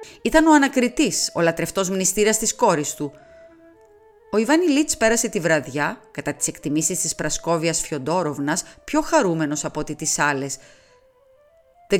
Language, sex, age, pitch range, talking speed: Greek, female, 30-49, 150-235 Hz, 140 wpm